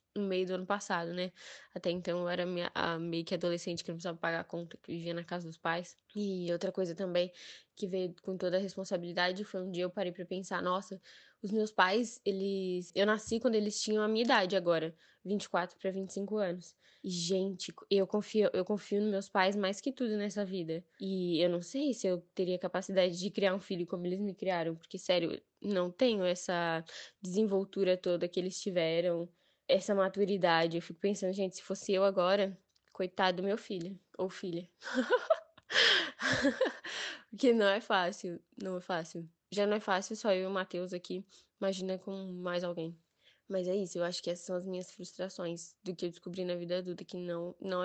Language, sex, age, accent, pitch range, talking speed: Portuguese, female, 10-29, Brazilian, 175-195 Hz, 200 wpm